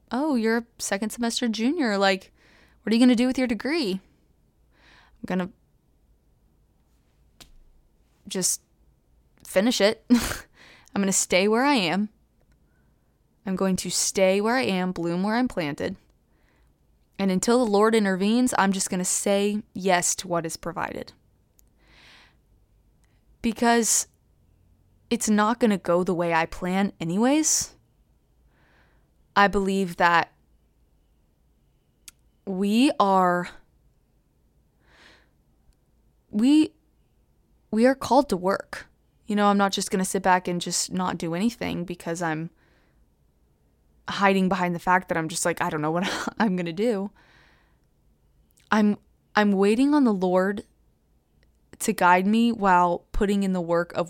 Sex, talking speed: female, 140 wpm